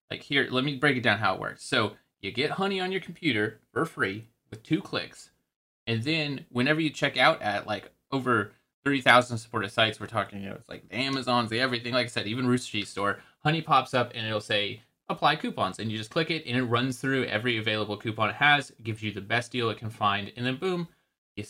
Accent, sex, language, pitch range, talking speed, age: American, male, English, 105-135 Hz, 245 wpm, 30-49